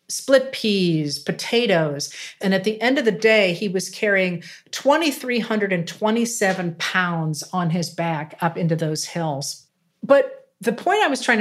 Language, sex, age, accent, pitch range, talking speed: English, female, 50-69, American, 170-215 Hz, 145 wpm